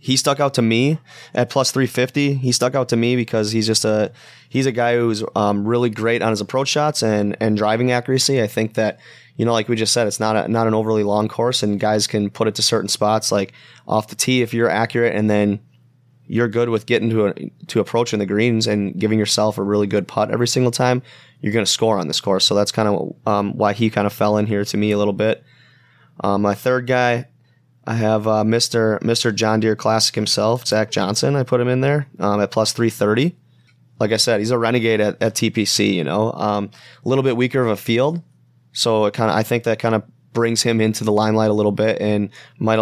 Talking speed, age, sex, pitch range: 240 wpm, 20-39, male, 105-120 Hz